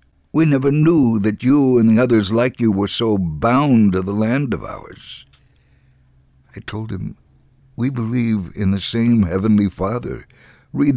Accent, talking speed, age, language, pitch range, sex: American, 160 wpm, 60-79, English, 95-120 Hz, male